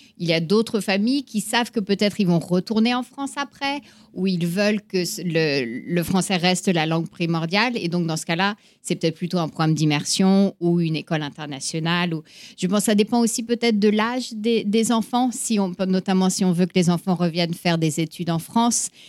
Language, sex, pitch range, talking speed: French, female, 165-205 Hz, 220 wpm